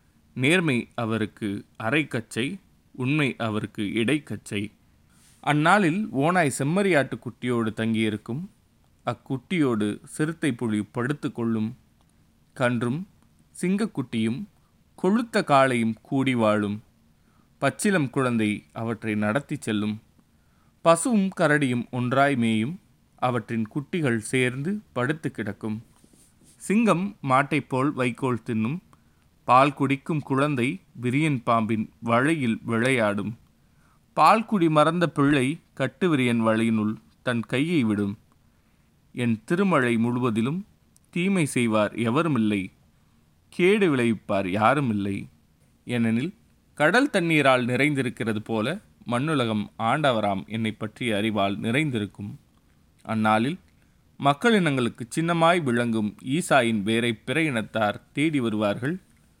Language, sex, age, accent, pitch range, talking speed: Tamil, male, 30-49, native, 110-150 Hz, 90 wpm